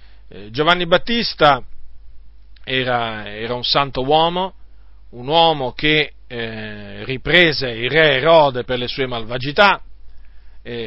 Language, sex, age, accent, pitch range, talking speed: Italian, male, 40-59, native, 105-145 Hz, 110 wpm